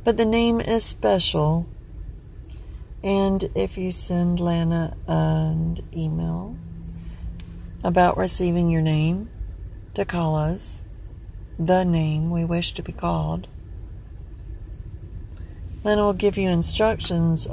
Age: 40-59